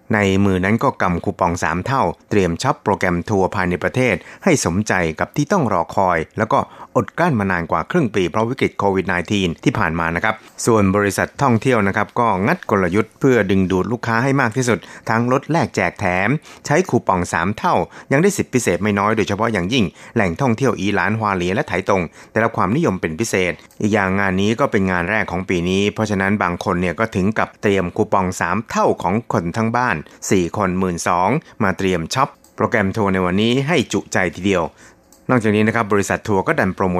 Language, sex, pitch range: Thai, male, 90-115 Hz